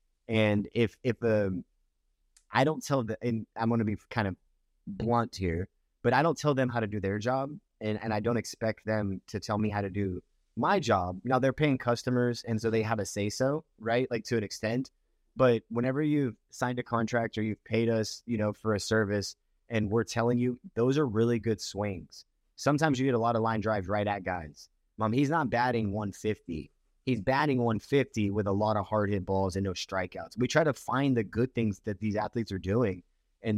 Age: 30-49